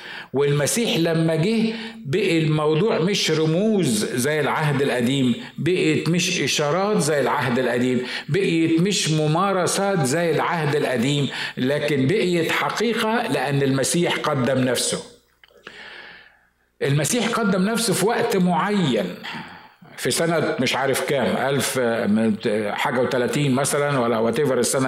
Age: 50-69